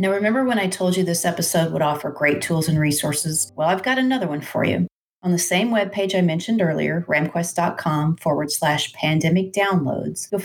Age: 40-59